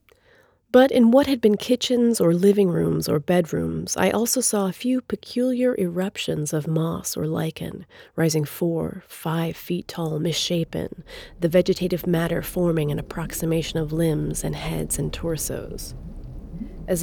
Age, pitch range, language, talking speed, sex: 30-49, 155-190 Hz, Czech, 145 wpm, female